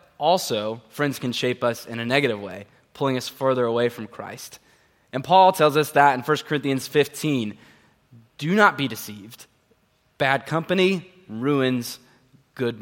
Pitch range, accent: 120-145 Hz, American